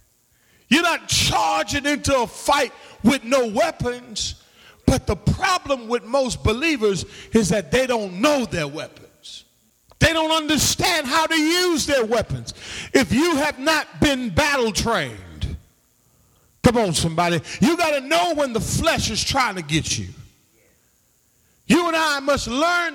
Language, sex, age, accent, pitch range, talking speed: English, male, 40-59, American, 180-290 Hz, 150 wpm